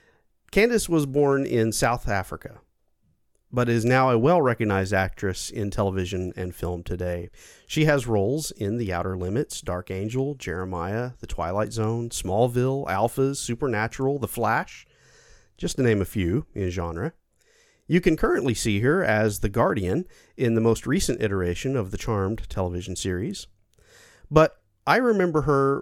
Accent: American